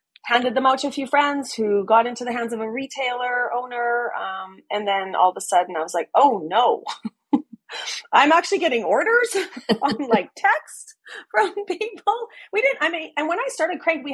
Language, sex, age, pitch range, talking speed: English, female, 30-49, 210-310 Hz, 200 wpm